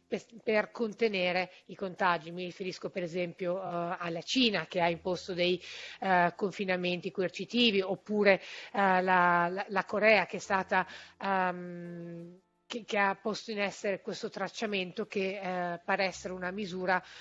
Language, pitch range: Italian, 190-230 Hz